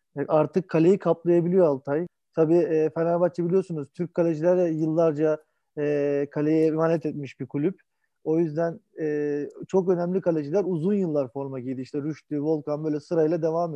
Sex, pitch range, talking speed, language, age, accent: male, 160-205 Hz, 130 wpm, Turkish, 40-59, native